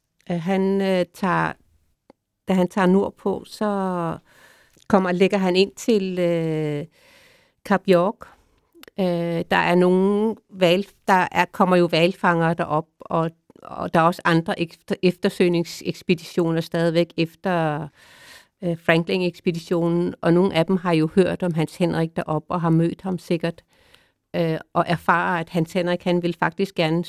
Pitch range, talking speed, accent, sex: 170-195 Hz, 145 wpm, native, female